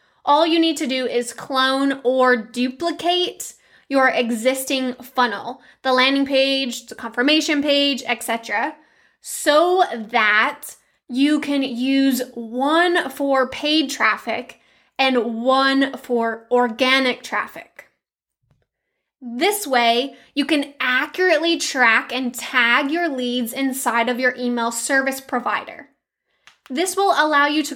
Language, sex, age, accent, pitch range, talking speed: English, female, 10-29, American, 250-300 Hz, 120 wpm